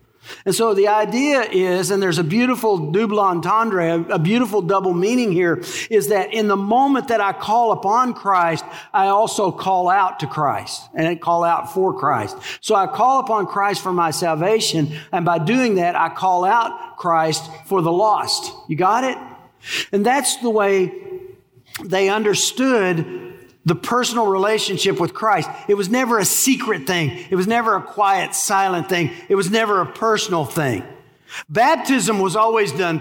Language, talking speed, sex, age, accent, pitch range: English, 170 wpm, male, 50-69, American, 185-235 Hz